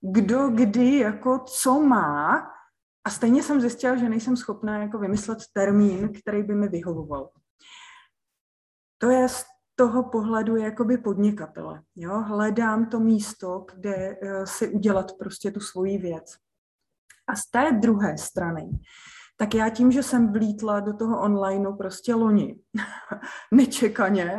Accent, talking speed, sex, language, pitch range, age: native, 135 wpm, female, Czech, 205-250 Hz, 20-39